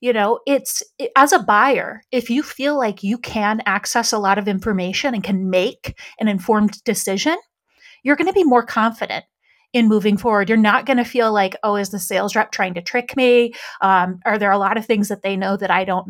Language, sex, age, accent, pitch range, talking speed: English, female, 30-49, American, 205-255 Hz, 225 wpm